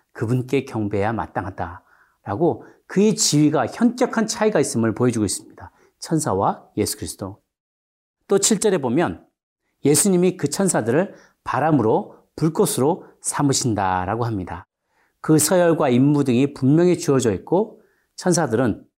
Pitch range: 110-165 Hz